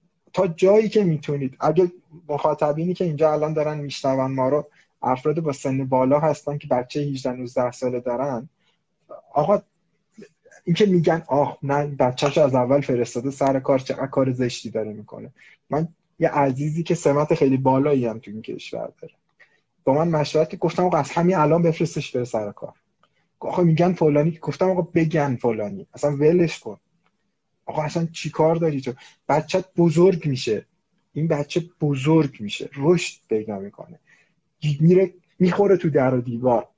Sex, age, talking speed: male, 20-39, 155 wpm